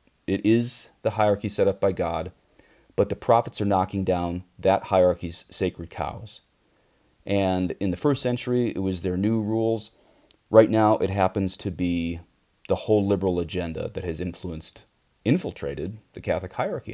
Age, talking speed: 30-49, 160 wpm